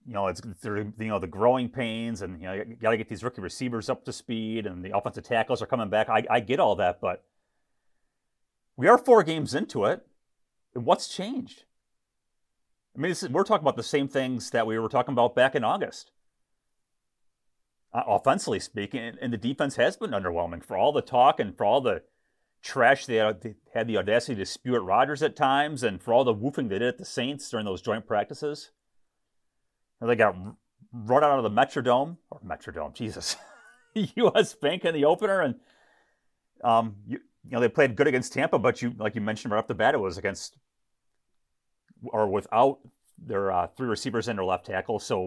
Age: 30-49